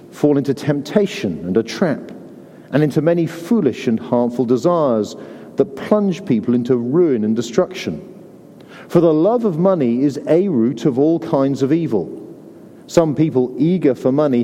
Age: 50-69